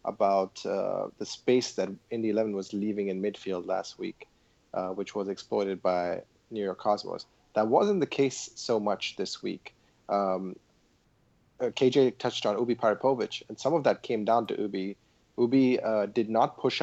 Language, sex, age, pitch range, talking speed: English, male, 30-49, 100-115 Hz, 175 wpm